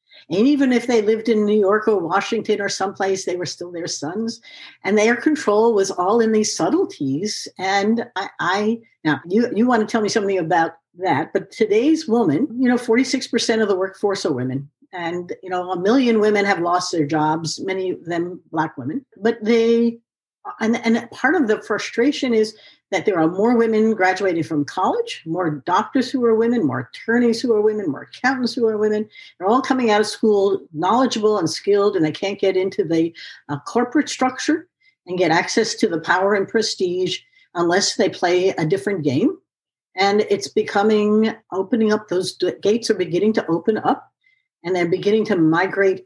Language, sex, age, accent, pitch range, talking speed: English, female, 60-79, American, 175-230 Hz, 190 wpm